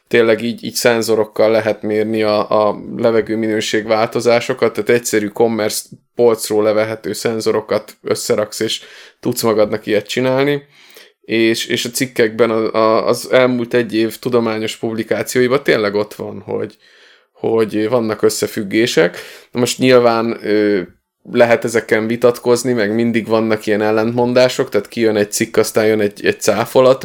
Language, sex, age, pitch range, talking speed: Hungarian, male, 20-39, 105-120 Hz, 135 wpm